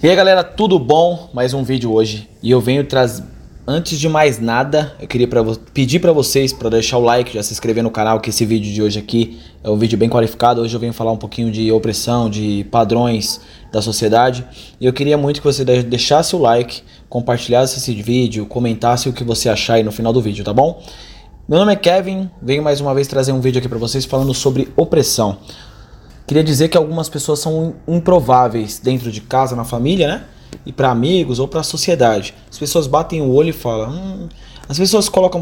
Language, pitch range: Portuguese, 115-150 Hz